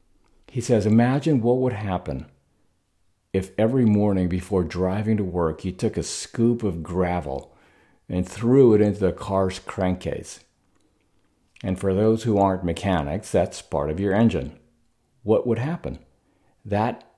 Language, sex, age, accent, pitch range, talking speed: English, male, 50-69, American, 90-110 Hz, 145 wpm